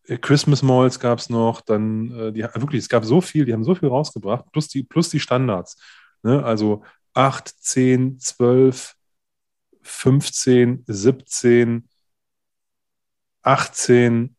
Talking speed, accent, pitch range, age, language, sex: 125 wpm, German, 110-135 Hz, 20-39, German, male